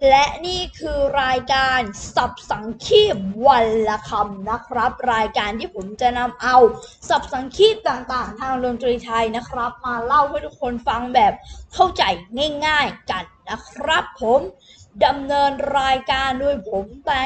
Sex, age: female, 20-39